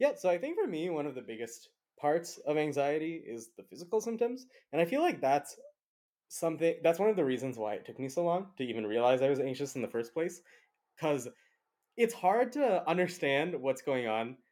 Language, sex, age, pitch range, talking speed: English, male, 20-39, 120-175 Hz, 215 wpm